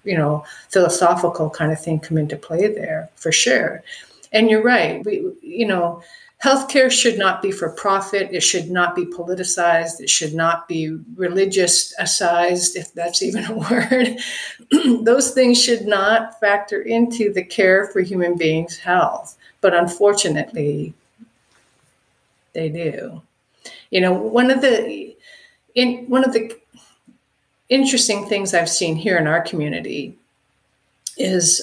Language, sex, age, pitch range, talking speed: English, female, 50-69, 165-230 Hz, 140 wpm